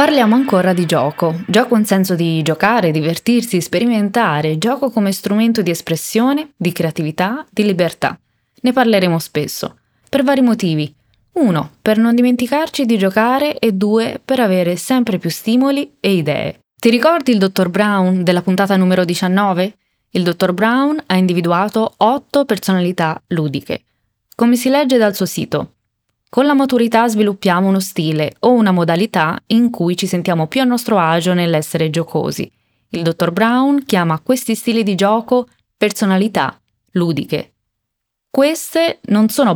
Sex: female